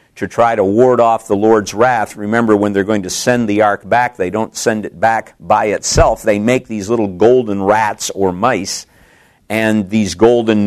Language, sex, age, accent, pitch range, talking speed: English, male, 50-69, American, 100-115 Hz, 195 wpm